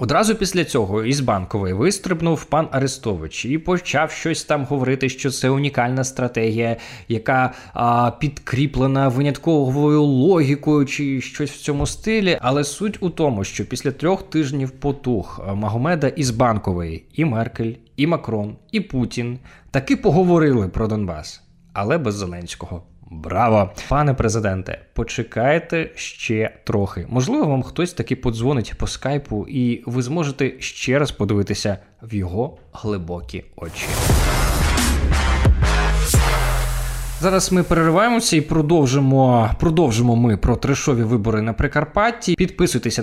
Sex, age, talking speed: male, 20-39, 120 wpm